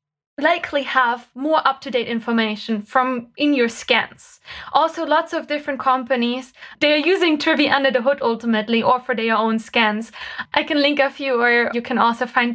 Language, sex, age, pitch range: English, female, 20-39, 230-270 Hz